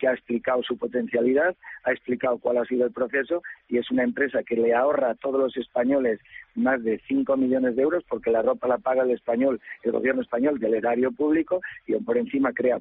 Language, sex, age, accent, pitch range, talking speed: Spanish, male, 40-59, Spanish, 120-145 Hz, 215 wpm